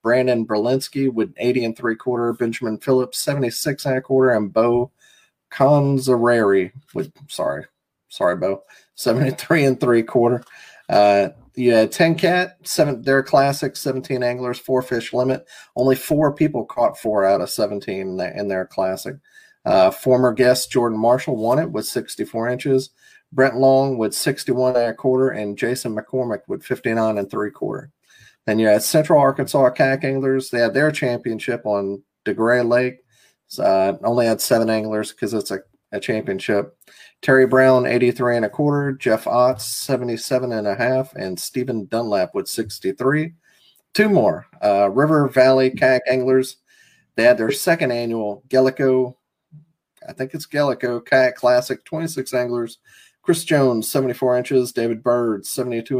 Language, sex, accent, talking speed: English, male, American, 145 wpm